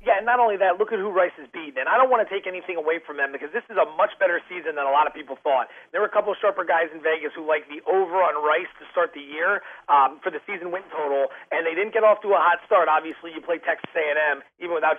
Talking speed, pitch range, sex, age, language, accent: 300 wpm, 170-235 Hz, male, 30-49, English, American